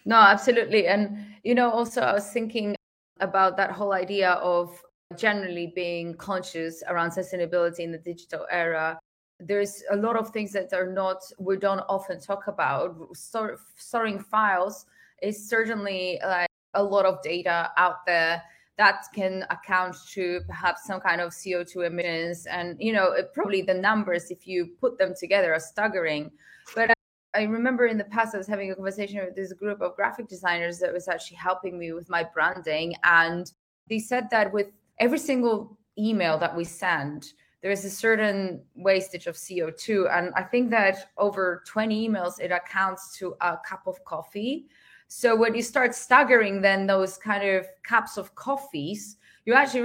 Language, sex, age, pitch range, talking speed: English, female, 20-39, 180-220 Hz, 170 wpm